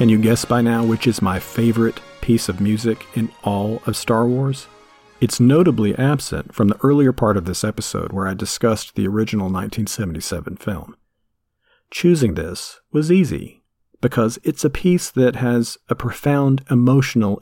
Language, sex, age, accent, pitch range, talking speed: English, male, 40-59, American, 105-135 Hz, 160 wpm